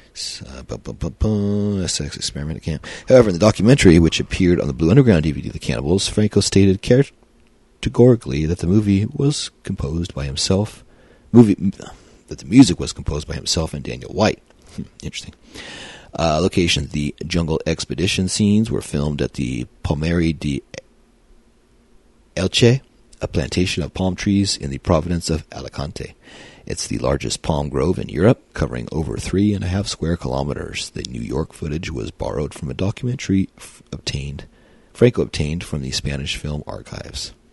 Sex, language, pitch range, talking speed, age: male, English, 75-100 Hz, 160 wpm, 40-59